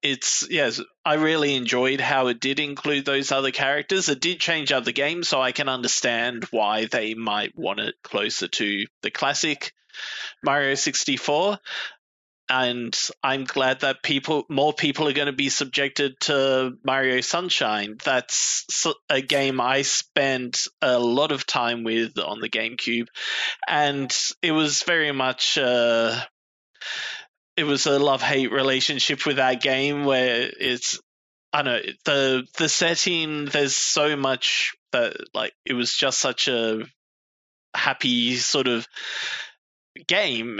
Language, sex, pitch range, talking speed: English, male, 120-145 Hz, 140 wpm